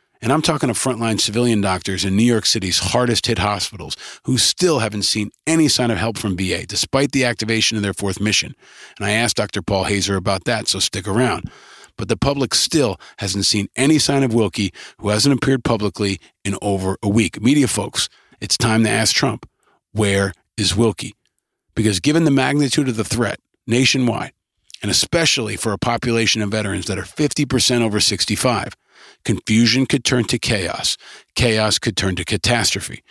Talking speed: 180 wpm